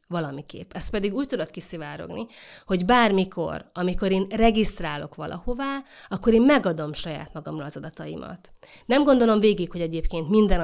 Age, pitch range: 30-49, 160-230 Hz